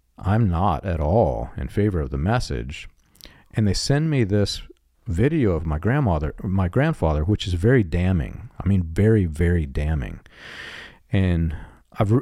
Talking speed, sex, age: 150 wpm, male, 50-69